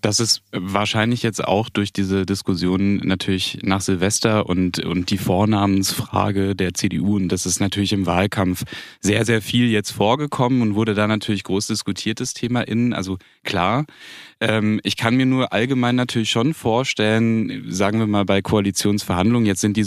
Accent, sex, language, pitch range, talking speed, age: German, male, German, 95-110 Hz, 165 wpm, 10-29